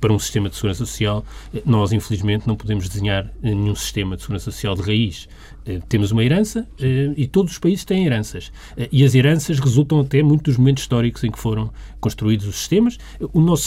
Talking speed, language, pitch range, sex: 190 wpm, Portuguese, 110-175 Hz, male